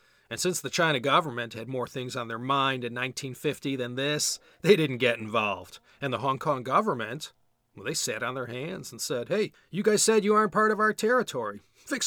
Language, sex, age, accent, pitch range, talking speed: English, male, 40-59, American, 120-180 Hz, 215 wpm